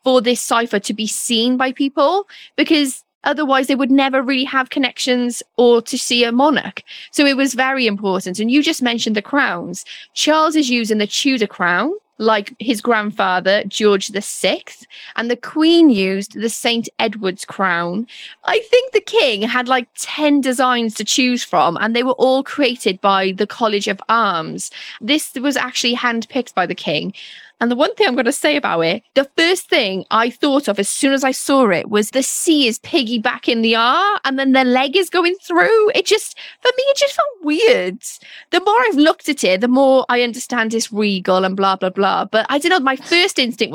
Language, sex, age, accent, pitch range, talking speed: English, female, 10-29, British, 220-295 Hz, 200 wpm